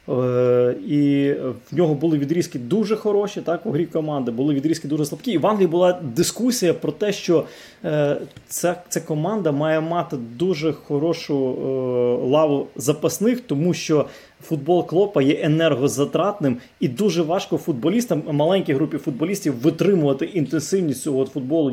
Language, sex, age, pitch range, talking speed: Ukrainian, male, 20-39, 140-175 Hz, 145 wpm